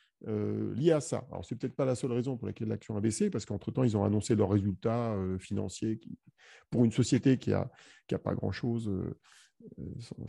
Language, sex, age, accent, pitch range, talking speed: French, male, 40-59, French, 110-145 Hz, 205 wpm